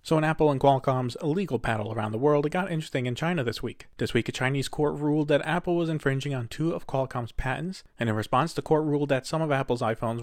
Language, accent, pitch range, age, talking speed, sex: English, American, 120-155 Hz, 30-49, 250 wpm, male